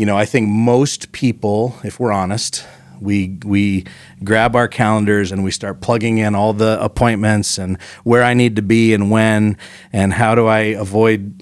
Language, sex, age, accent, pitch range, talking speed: English, male, 40-59, American, 100-120 Hz, 185 wpm